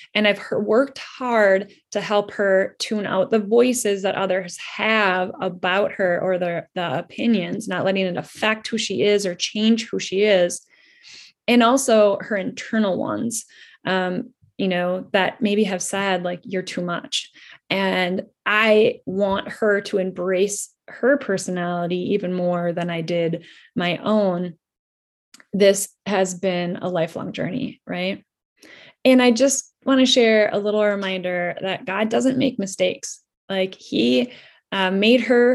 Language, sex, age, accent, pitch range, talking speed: English, female, 20-39, American, 185-225 Hz, 150 wpm